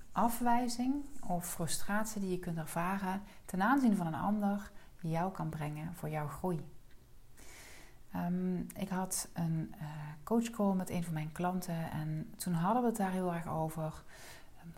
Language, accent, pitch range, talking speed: Dutch, Dutch, 165-200 Hz, 160 wpm